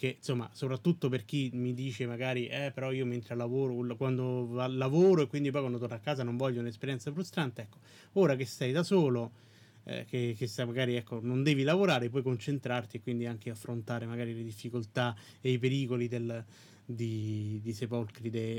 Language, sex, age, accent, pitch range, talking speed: Italian, male, 30-49, native, 120-140 Hz, 180 wpm